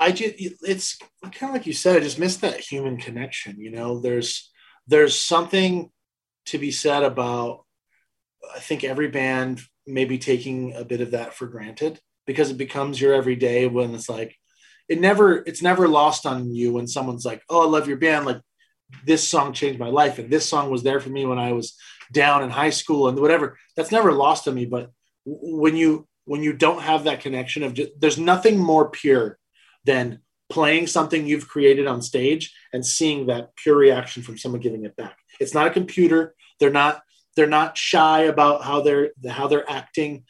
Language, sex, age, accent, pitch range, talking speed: English, male, 20-39, American, 125-155 Hz, 200 wpm